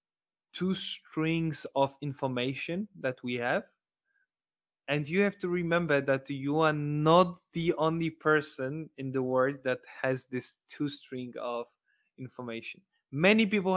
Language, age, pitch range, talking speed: English, 20-39, 130-155 Hz, 135 wpm